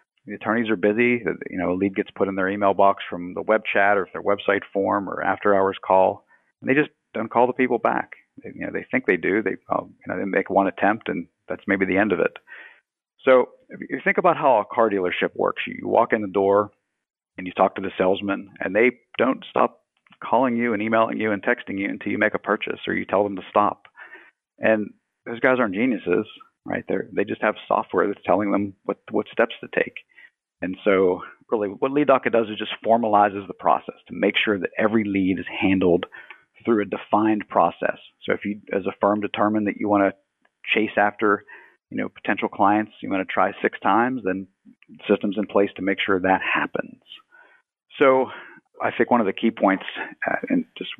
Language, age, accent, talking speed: English, 50-69, American, 215 wpm